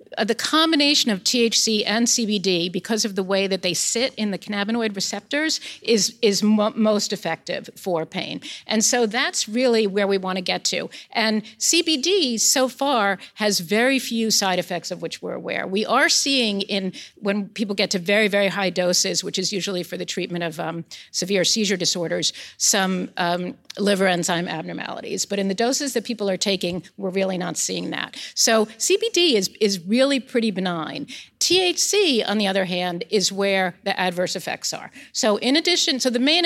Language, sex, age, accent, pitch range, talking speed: English, female, 50-69, American, 190-245 Hz, 185 wpm